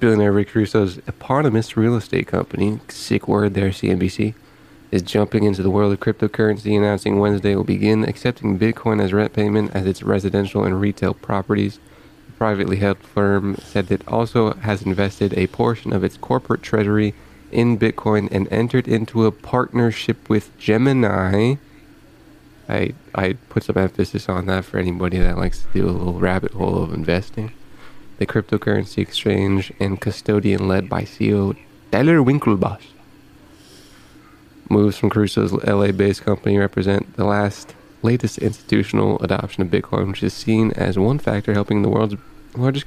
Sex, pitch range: male, 100-115 Hz